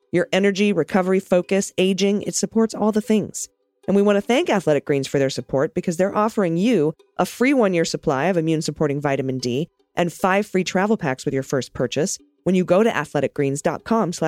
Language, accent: English, American